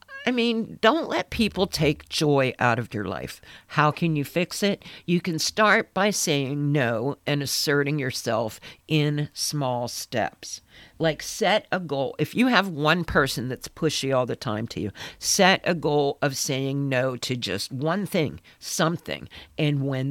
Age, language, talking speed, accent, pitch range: 50-69, English, 170 wpm, American, 130-165 Hz